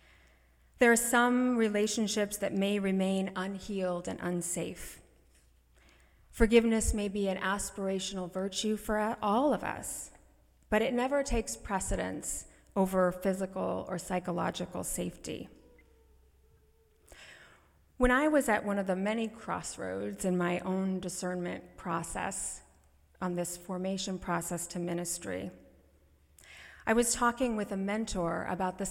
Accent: American